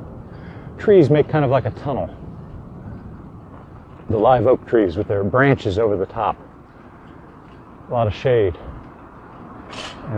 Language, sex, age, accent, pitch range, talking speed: English, male, 50-69, American, 125-170 Hz, 130 wpm